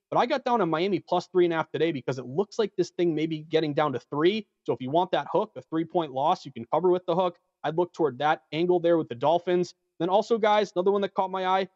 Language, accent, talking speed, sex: English, American, 290 wpm, male